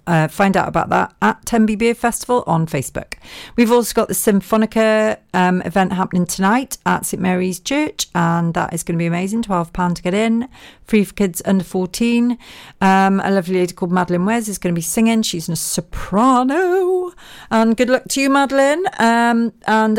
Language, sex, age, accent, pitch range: Japanese, female, 40-59, British, 170-230 Hz